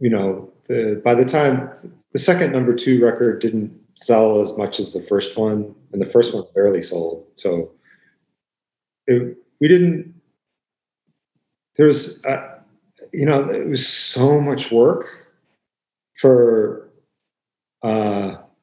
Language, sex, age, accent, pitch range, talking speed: English, male, 40-59, American, 105-135 Hz, 120 wpm